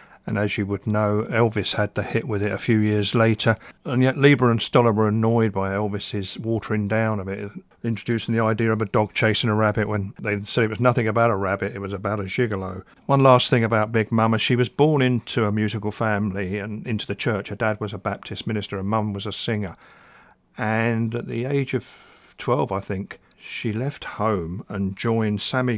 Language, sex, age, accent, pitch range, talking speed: English, male, 50-69, British, 105-120 Hz, 215 wpm